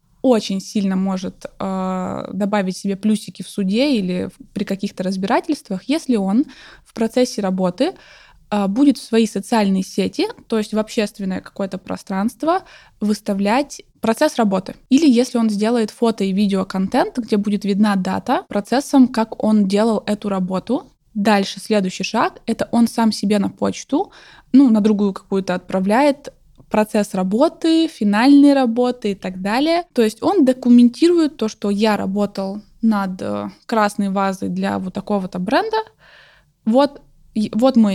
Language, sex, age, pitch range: Russian, female, 20-39, 200-255 Hz